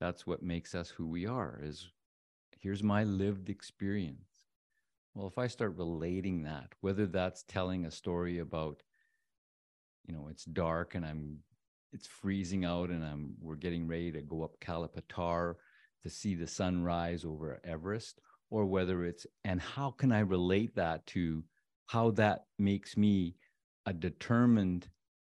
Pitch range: 85-110 Hz